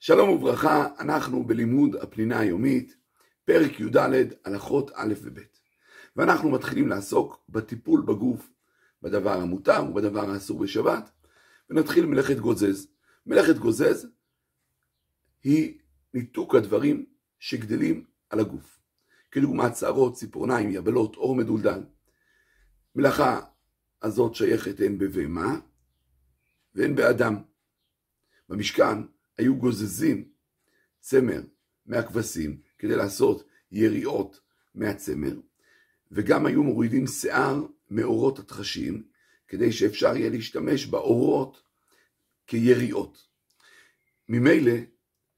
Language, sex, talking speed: Hebrew, male, 90 wpm